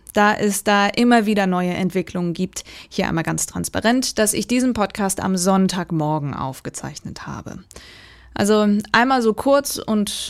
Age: 20-39